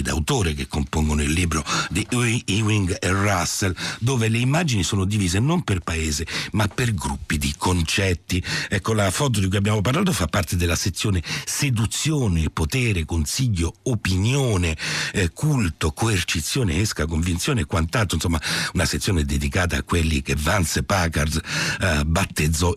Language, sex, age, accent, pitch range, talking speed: Italian, male, 60-79, native, 85-115 Hz, 145 wpm